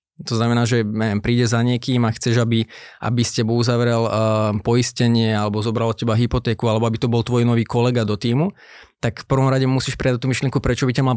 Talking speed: 220 wpm